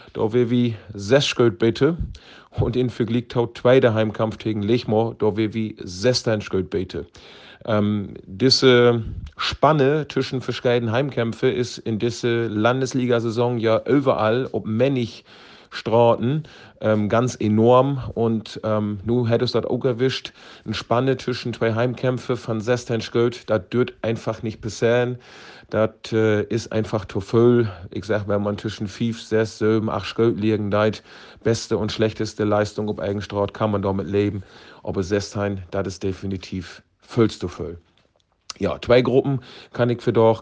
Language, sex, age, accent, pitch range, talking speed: German, male, 40-59, German, 105-120 Hz, 145 wpm